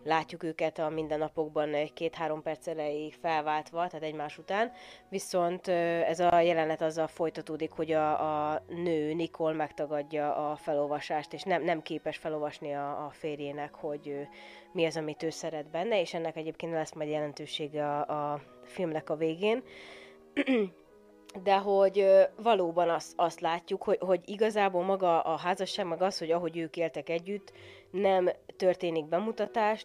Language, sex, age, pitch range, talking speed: Hungarian, female, 20-39, 155-180 Hz, 145 wpm